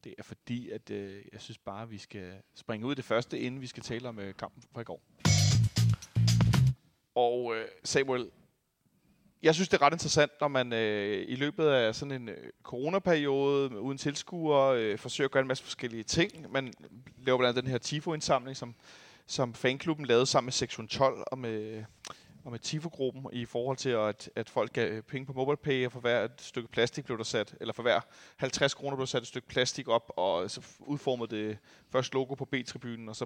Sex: male